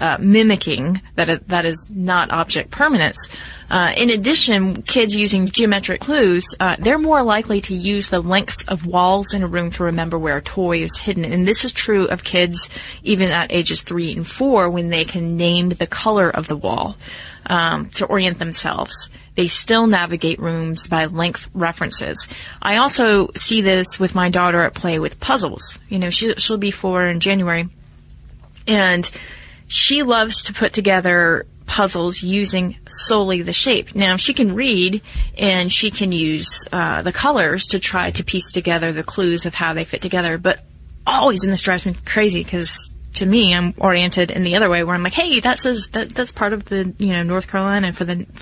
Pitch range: 175-205 Hz